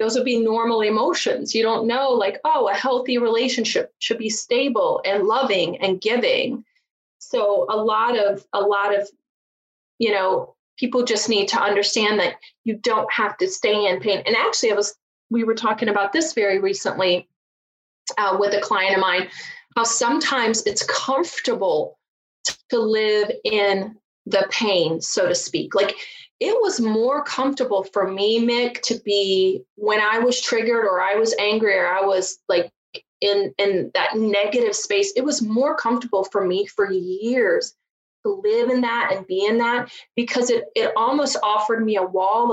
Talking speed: 170 wpm